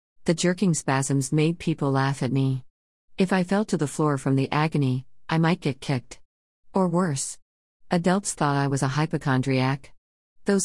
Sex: female